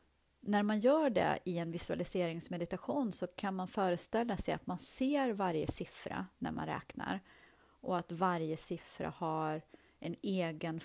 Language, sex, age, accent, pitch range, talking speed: Swedish, female, 30-49, native, 165-230 Hz, 150 wpm